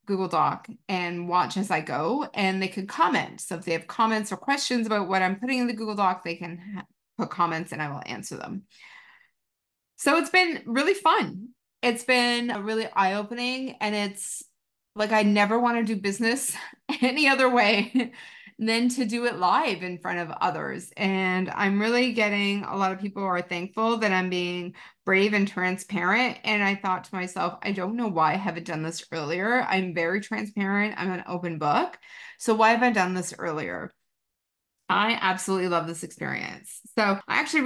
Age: 30-49